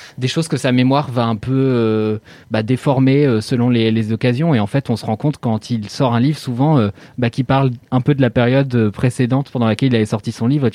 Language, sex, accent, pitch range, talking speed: French, male, French, 110-135 Hz, 260 wpm